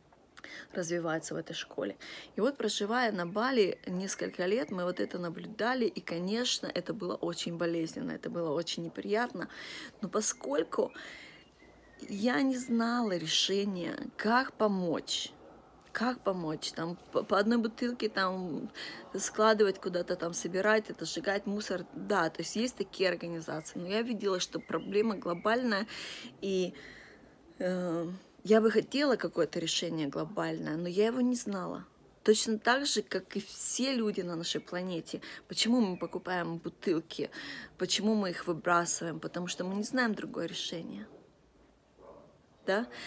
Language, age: Russian, 20-39